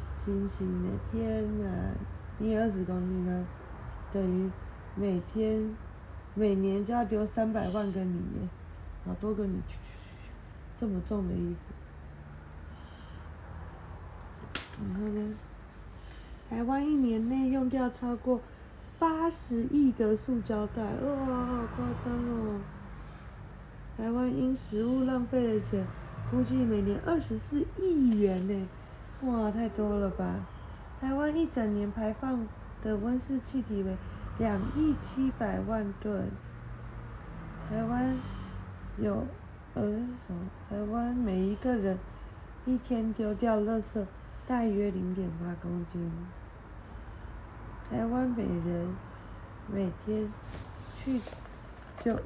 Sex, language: female, Chinese